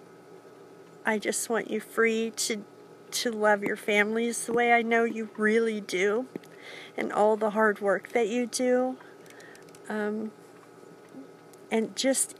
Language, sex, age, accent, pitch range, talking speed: English, female, 50-69, American, 210-260 Hz, 135 wpm